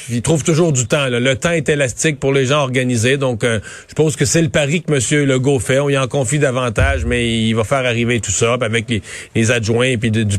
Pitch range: 125-155 Hz